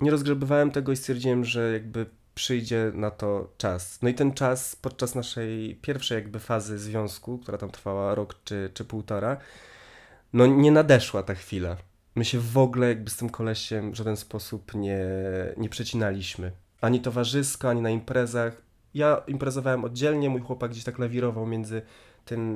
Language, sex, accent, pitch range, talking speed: Polish, male, native, 110-140 Hz, 165 wpm